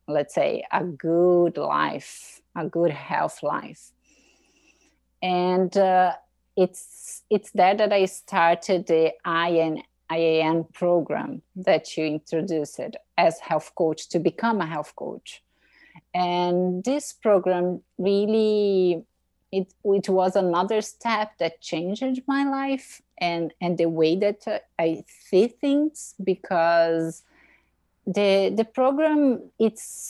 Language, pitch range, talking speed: English, 165-220 Hz, 115 wpm